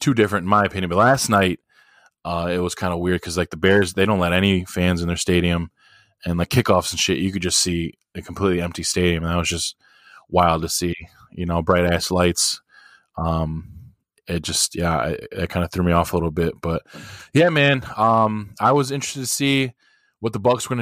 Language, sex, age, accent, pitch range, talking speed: English, male, 20-39, American, 85-105 Hz, 220 wpm